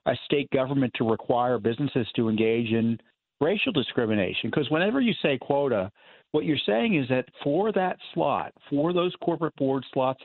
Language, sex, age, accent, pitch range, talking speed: English, male, 50-69, American, 120-165 Hz, 170 wpm